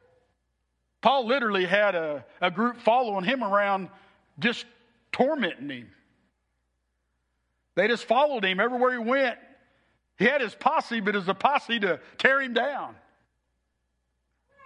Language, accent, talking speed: English, American, 130 wpm